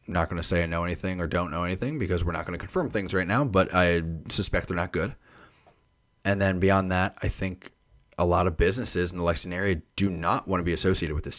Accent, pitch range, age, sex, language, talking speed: American, 85-100 Hz, 20-39, male, English, 255 wpm